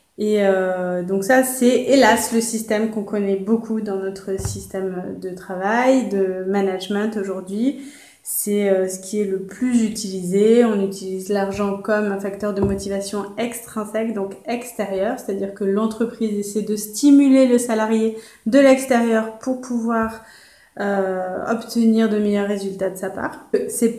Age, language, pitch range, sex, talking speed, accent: 20-39, French, 200-245 Hz, female, 150 wpm, French